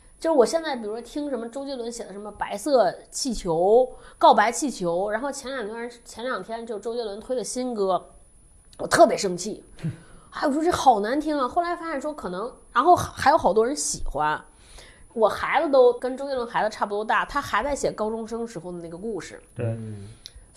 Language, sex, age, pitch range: Chinese, female, 20-39, 185-275 Hz